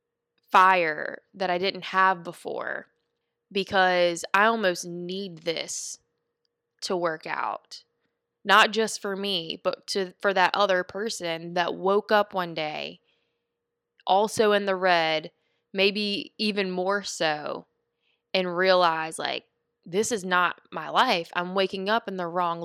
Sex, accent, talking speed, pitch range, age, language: female, American, 135 wpm, 175-210 Hz, 20-39, English